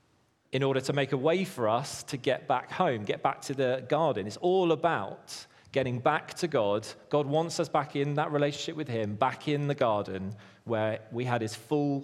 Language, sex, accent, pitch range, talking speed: English, male, British, 120-150 Hz, 210 wpm